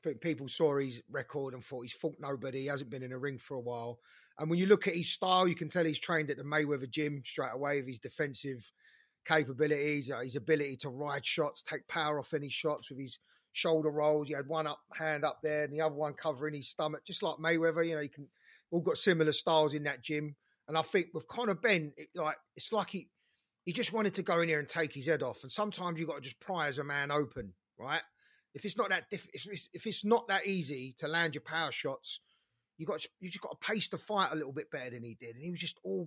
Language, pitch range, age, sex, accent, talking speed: English, 140-170 Hz, 30-49, male, British, 255 wpm